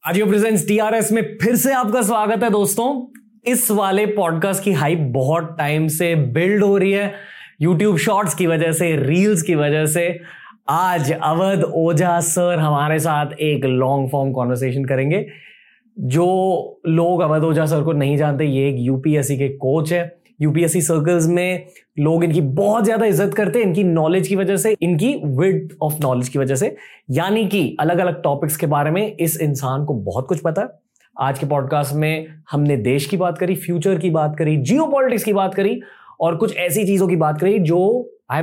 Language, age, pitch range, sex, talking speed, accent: Hindi, 20-39, 150-200 Hz, male, 185 wpm, native